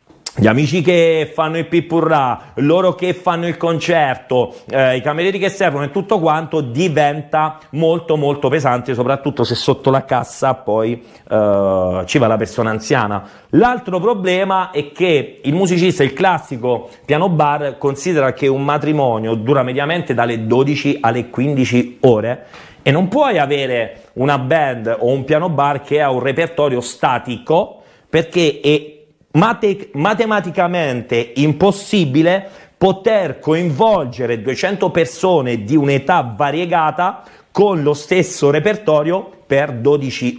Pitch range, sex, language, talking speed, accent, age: 130-175 Hz, male, Italian, 130 wpm, native, 40-59